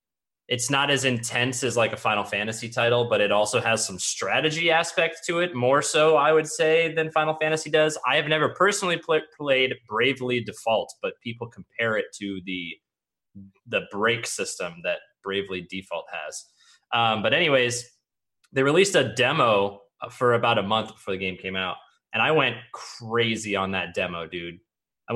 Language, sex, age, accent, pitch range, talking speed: English, male, 20-39, American, 105-155 Hz, 175 wpm